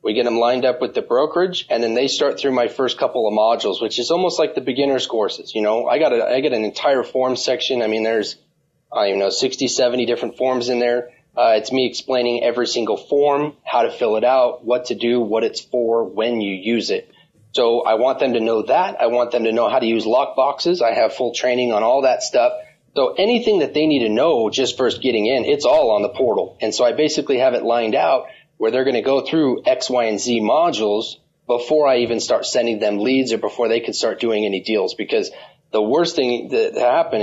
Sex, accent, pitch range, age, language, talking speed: male, American, 115-155 Hz, 30-49, English, 245 wpm